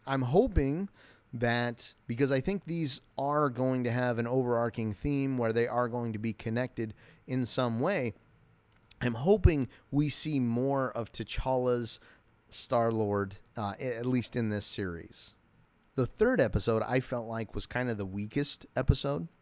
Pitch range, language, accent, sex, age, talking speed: 110-135 Hz, English, American, male, 30-49, 150 wpm